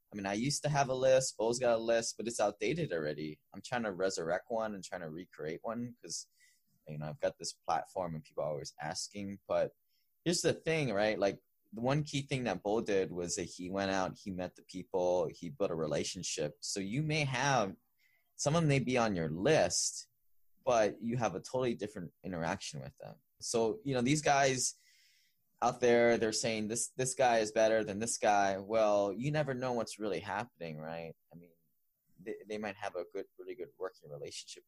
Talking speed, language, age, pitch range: 210 wpm, English, 10-29, 95-135 Hz